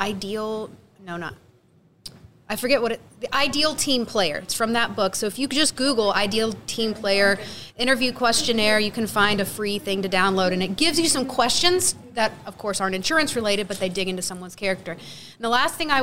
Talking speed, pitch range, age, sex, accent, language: 210 wpm, 195-245 Hz, 30-49, female, American, English